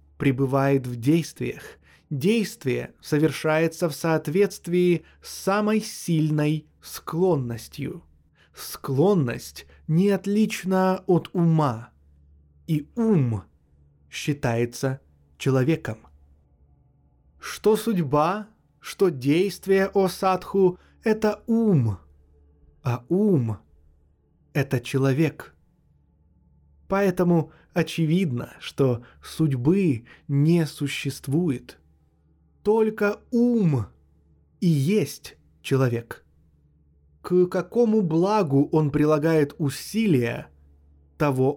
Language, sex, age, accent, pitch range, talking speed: Russian, male, 20-39, native, 110-175 Hz, 75 wpm